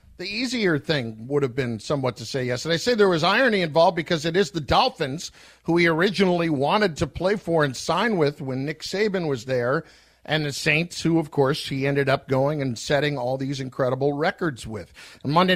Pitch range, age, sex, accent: 135-170 Hz, 50-69, male, American